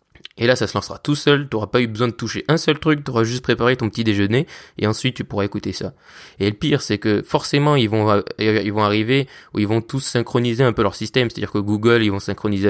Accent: French